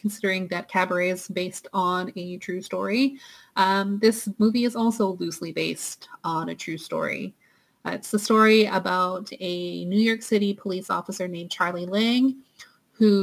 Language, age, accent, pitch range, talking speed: English, 30-49, American, 180-220 Hz, 160 wpm